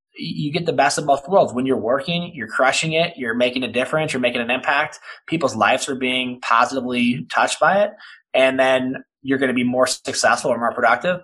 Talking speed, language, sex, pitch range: 215 wpm, English, male, 110-135 Hz